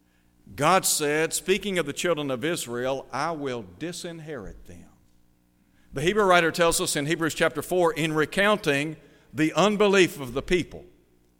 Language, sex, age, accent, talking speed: English, male, 60-79, American, 145 wpm